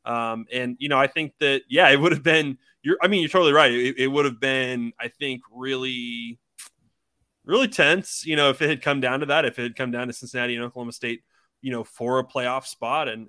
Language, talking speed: English, 245 wpm